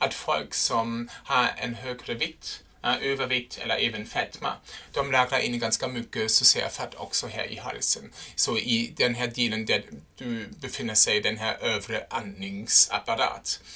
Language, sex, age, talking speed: Swedish, male, 30-49, 155 wpm